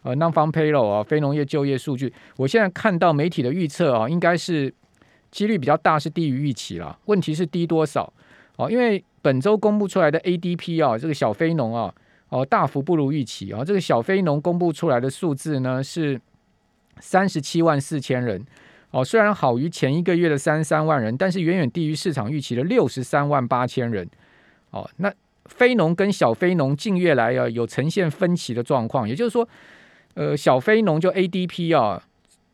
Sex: male